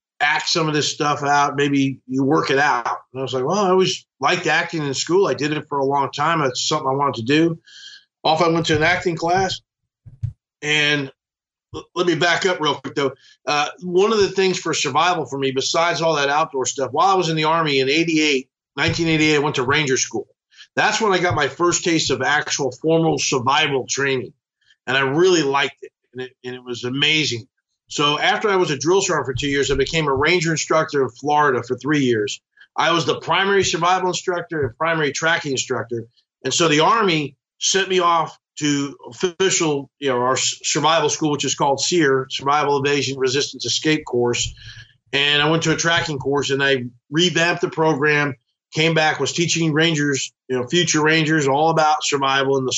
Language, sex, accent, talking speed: English, male, American, 205 wpm